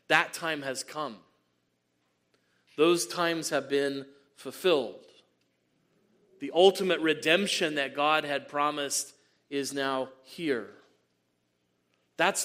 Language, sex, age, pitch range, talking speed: English, male, 40-59, 115-165 Hz, 95 wpm